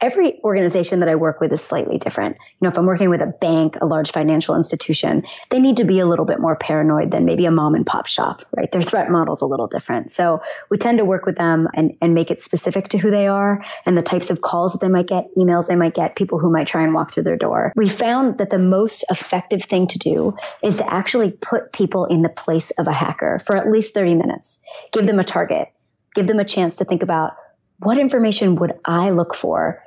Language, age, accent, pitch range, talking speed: English, 30-49, American, 165-200 Hz, 250 wpm